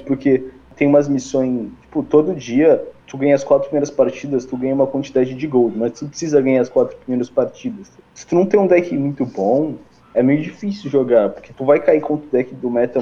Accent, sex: Brazilian, male